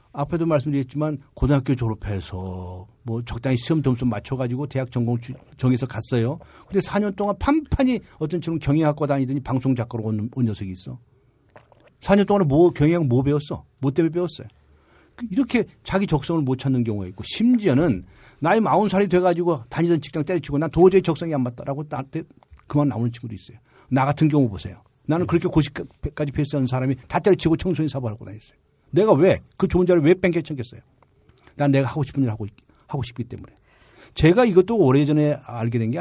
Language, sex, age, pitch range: Korean, male, 50-69, 130-195 Hz